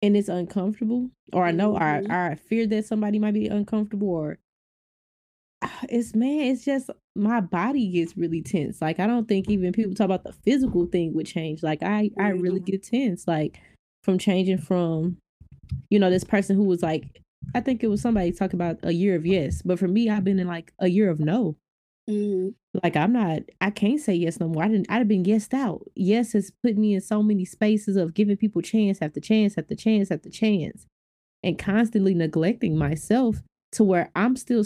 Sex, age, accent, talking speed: female, 20-39, American, 210 wpm